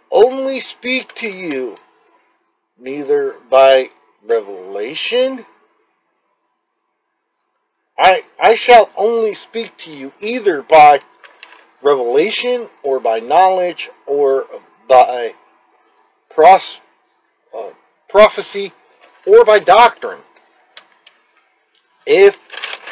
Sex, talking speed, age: male, 75 wpm, 50-69